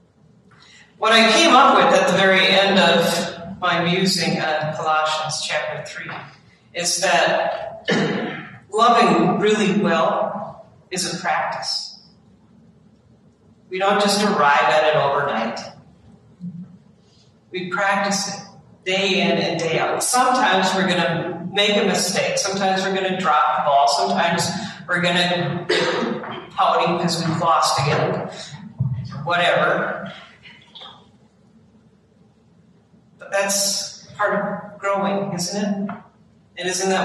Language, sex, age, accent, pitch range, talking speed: English, female, 50-69, American, 155-195 Hz, 115 wpm